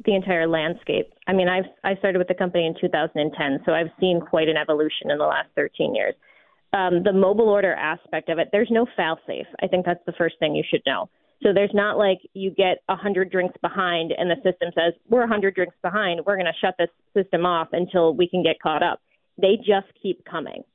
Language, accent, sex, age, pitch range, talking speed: English, American, female, 30-49, 170-200 Hz, 225 wpm